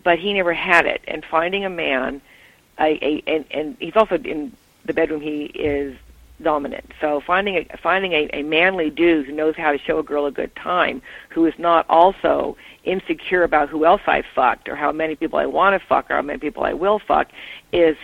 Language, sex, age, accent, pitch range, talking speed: English, female, 50-69, American, 150-190 Hz, 215 wpm